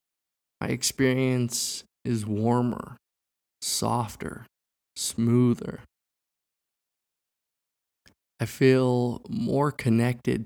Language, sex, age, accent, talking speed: English, male, 20-39, American, 55 wpm